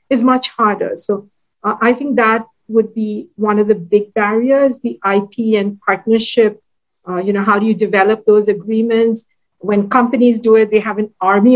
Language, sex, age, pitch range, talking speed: English, female, 50-69, 205-240 Hz, 185 wpm